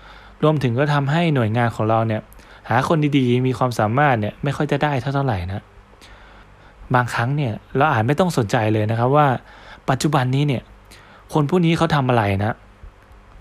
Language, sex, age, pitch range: Thai, male, 20-39, 110-145 Hz